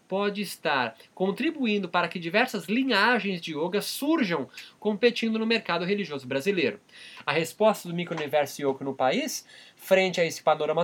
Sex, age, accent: male, 20-39, Brazilian